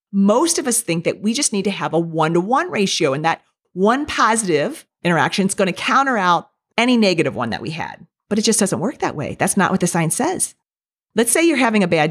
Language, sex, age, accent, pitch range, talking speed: English, female, 40-59, American, 175-245 Hz, 240 wpm